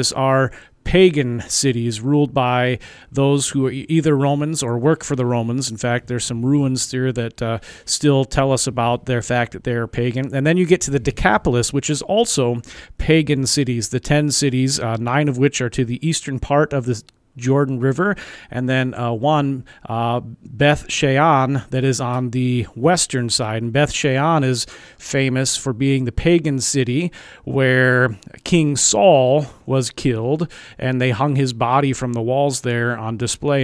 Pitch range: 125-145 Hz